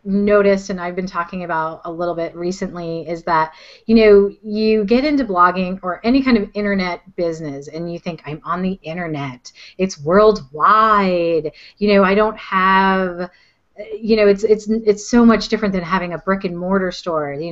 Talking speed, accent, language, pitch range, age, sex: 180 wpm, American, English, 175-210 Hz, 30-49, female